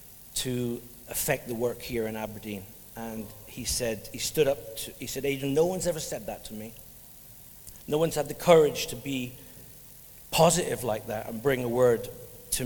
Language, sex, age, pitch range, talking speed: English, male, 50-69, 115-140 Hz, 180 wpm